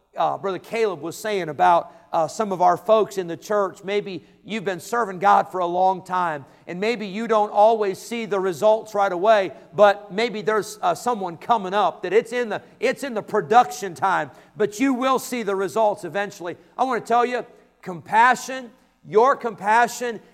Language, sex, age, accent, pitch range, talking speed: English, male, 50-69, American, 185-245 Hz, 190 wpm